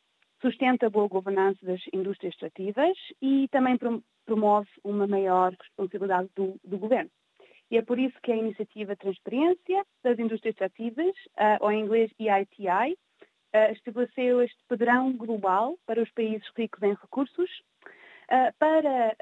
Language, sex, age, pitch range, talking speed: Portuguese, female, 30-49, 205-255 Hz, 130 wpm